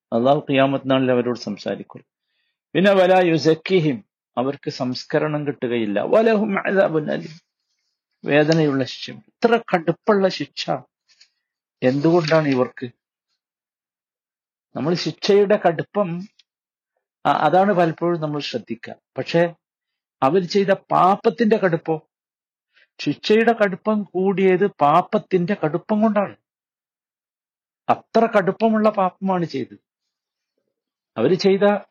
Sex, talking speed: male, 75 wpm